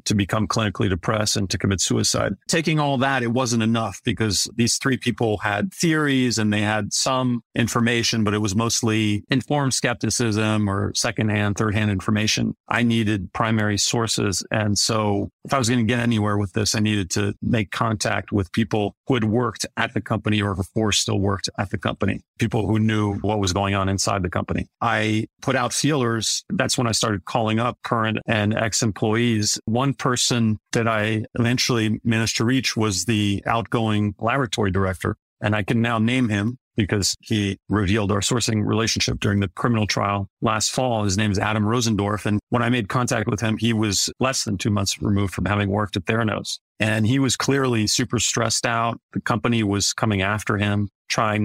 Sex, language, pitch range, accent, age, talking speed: male, English, 105-120 Hz, American, 40-59, 190 wpm